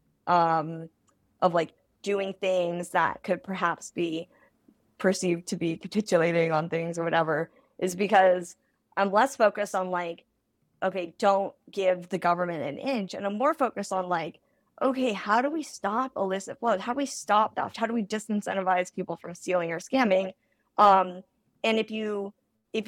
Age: 20-39